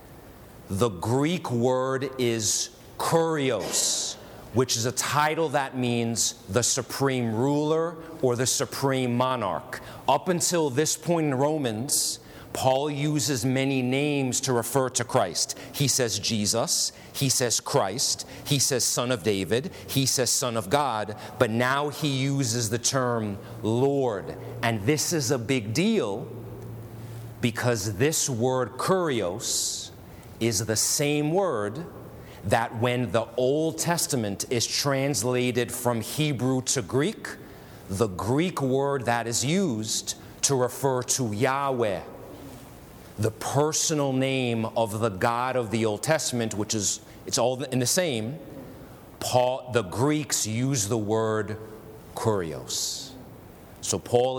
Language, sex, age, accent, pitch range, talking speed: English, male, 40-59, American, 115-135 Hz, 130 wpm